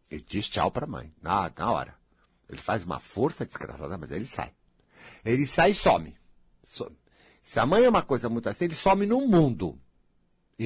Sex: male